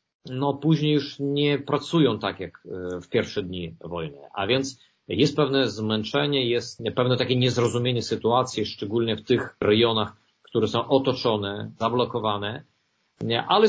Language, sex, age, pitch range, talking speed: Polish, male, 40-59, 110-150 Hz, 130 wpm